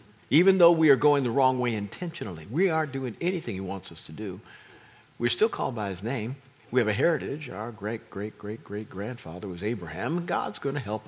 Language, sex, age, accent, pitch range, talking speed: English, male, 50-69, American, 115-180 Hz, 215 wpm